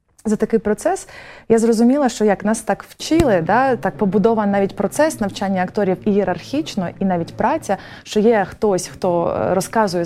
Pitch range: 180-225 Hz